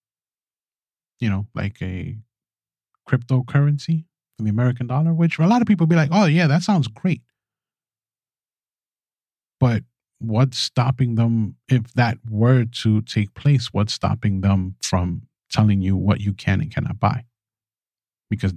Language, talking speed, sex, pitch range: English, 140 wpm, male, 105-140 Hz